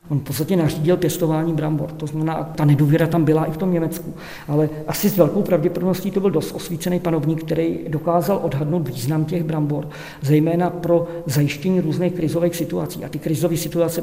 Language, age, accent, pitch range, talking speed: Czech, 50-69, native, 155-170 Hz, 180 wpm